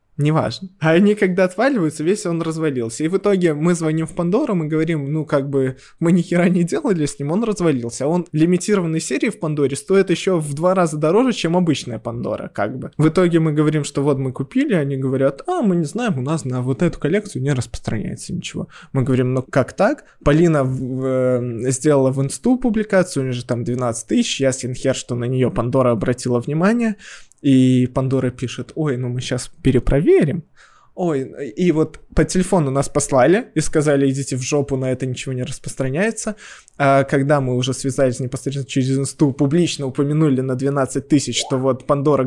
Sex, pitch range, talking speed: male, 135-180 Hz, 190 wpm